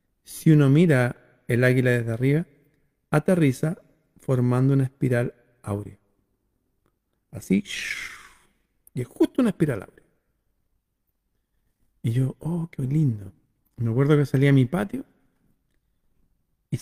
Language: Spanish